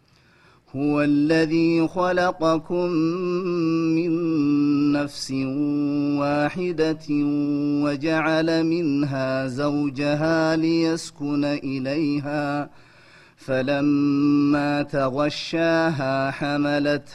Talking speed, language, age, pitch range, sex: 45 wpm, Amharic, 30-49, 145-165 Hz, male